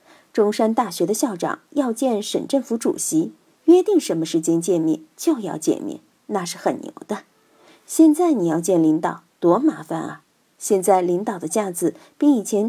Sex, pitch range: female, 185-300 Hz